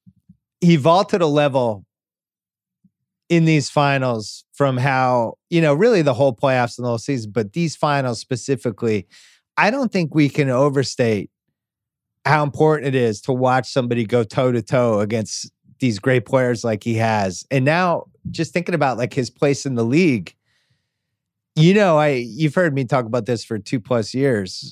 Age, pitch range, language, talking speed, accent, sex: 30-49, 120-150 Hz, English, 170 wpm, American, male